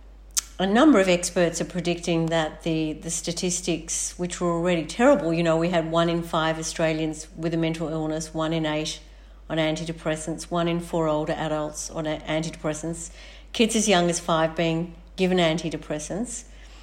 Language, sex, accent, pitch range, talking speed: English, female, Australian, 160-175 Hz, 165 wpm